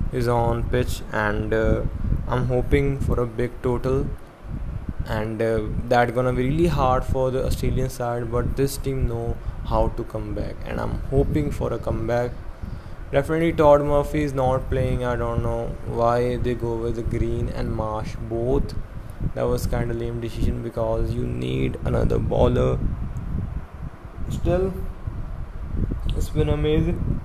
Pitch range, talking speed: 110-130 Hz, 150 wpm